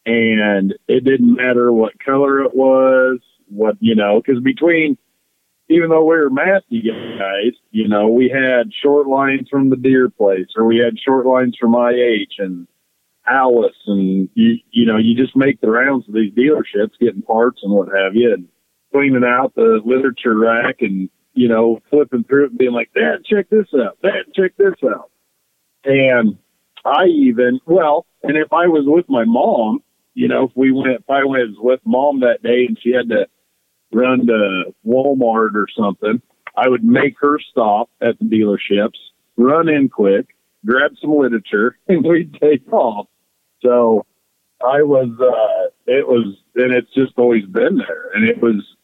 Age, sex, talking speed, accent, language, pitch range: 40-59, male, 175 wpm, American, English, 115-145 Hz